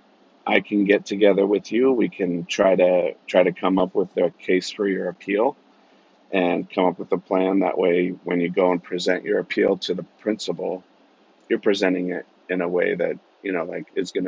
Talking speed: 210 wpm